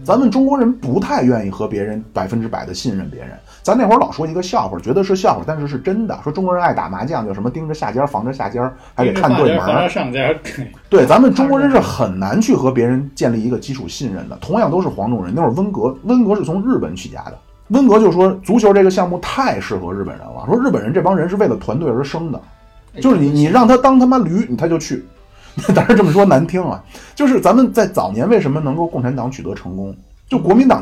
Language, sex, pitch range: Chinese, male, 125-205 Hz